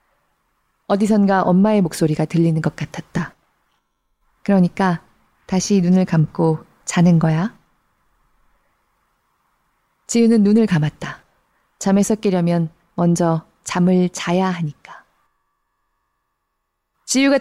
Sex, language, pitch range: female, Korean, 165-215 Hz